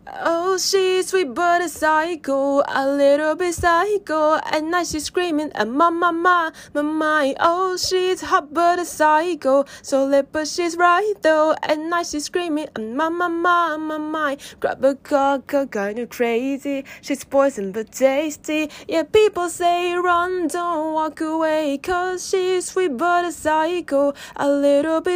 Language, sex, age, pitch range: Japanese, female, 20-39, 220-335 Hz